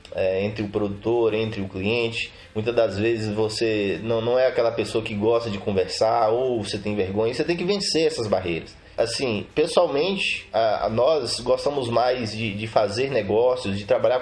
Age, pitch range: 20-39, 110-170 Hz